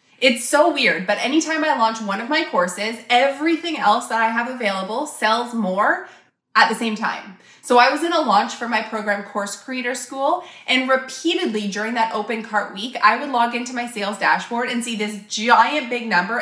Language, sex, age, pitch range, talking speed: English, female, 20-39, 215-280 Hz, 200 wpm